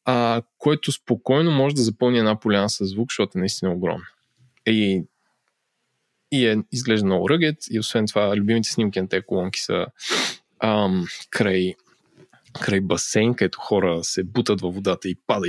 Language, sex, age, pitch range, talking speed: Bulgarian, male, 20-39, 110-150 Hz, 160 wpm